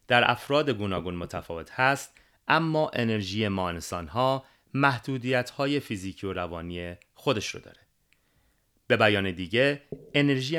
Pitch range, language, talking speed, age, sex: 95-140 Hz, Persian, 115 wpm, 30-49, male